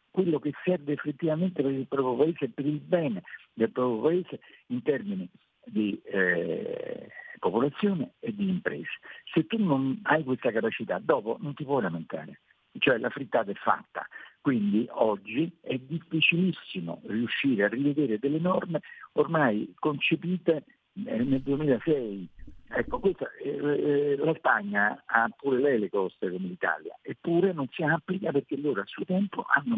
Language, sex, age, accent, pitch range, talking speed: Italian, male, 50-69, native, 130-185 Hz, 150 wpm